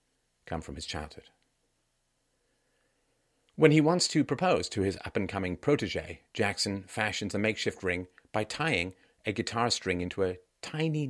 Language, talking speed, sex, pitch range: English, 140 wpm, male, 85-115 Hz